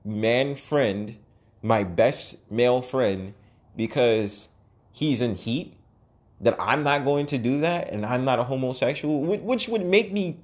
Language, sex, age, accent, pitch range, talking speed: English, male, 30-49, American, 105-140 Hz, 150 wpm